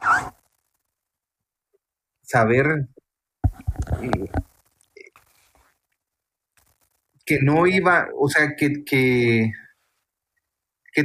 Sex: male